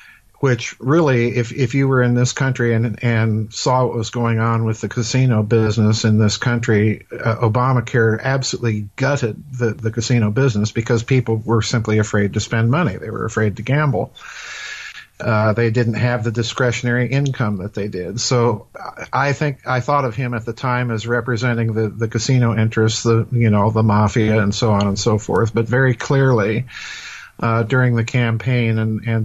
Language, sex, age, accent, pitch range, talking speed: English, male, 50-69, American, 110-125 Hz, 185 wpm